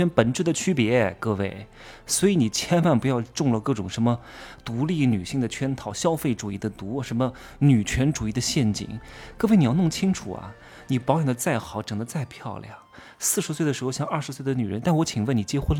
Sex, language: male, Chinese